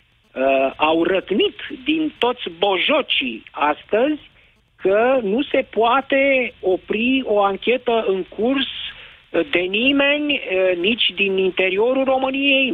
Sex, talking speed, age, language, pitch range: male, 100 wpm, 50-69, Romanian, 190-290 Hz